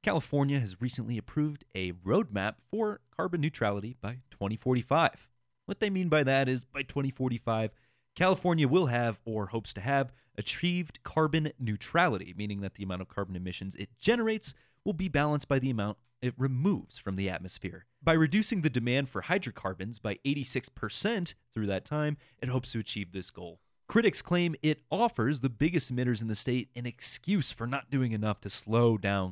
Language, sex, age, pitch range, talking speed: English, male, 30-49, 105-145 Hz, 175 wpm